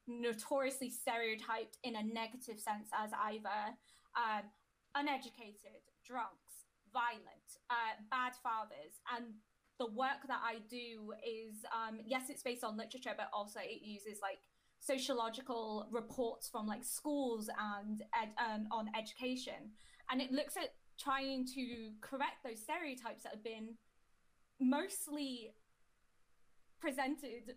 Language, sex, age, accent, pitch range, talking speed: English, female, 10-29, British, 225-270 Hz, 125 wpm